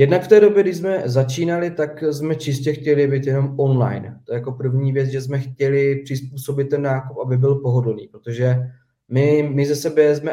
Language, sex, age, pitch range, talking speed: Czech, male, 20-39, 130-145 Hz, 200 wpm